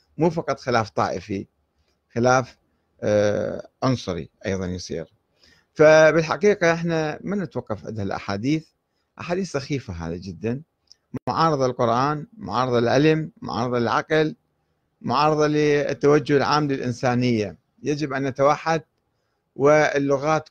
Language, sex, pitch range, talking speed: Arabic, male, 120-155 Hz, 95 wpm